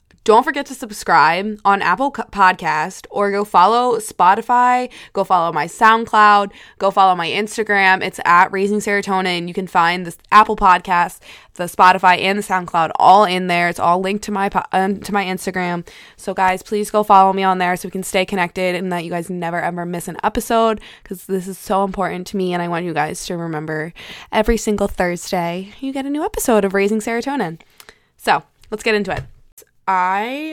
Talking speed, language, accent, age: 195 wpm, English, American, 20-39